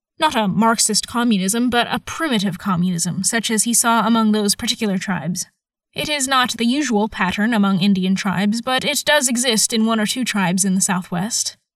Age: 10-29